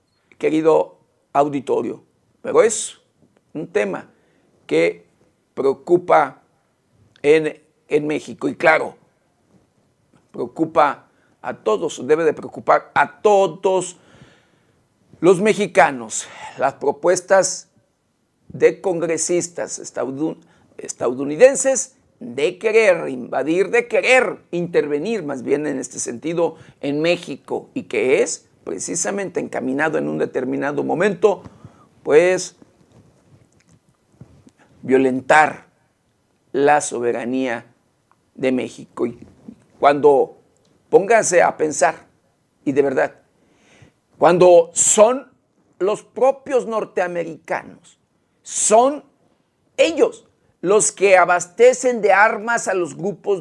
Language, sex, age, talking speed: Spanish, male, 50-69, 90 wpm